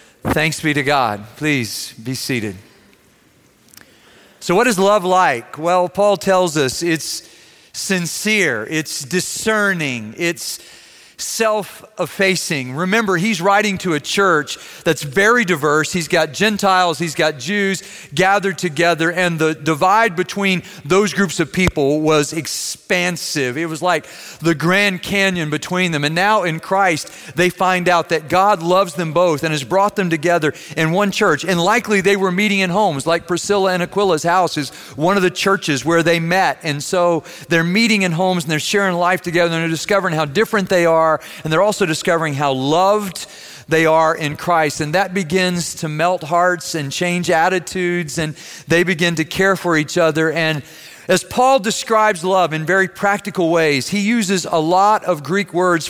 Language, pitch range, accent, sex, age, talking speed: English, 155-190 Hz, American, male, 40-59, 170 wpm